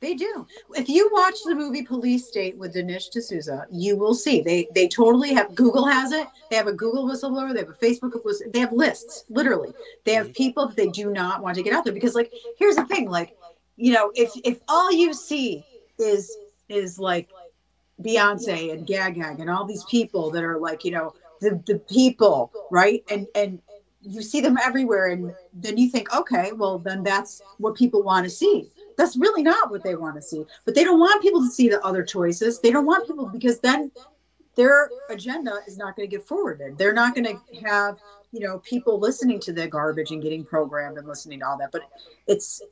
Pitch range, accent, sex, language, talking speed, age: 185-265 Hz, American, female, English, 215 wpm, 30-49